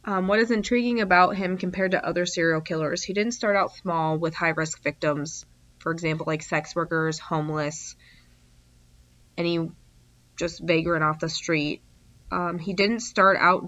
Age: 20-39